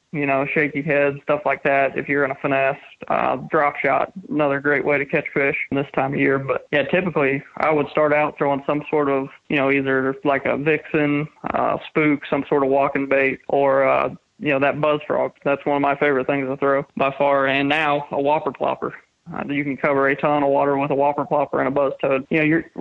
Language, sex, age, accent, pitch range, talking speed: English, male, 20-39, American, 140-155 Hz, 235 wpm